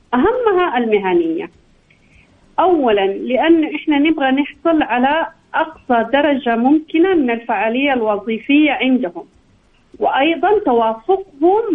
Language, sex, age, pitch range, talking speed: Arabic, female, 40-59, 220-320 Hz, 85 wpm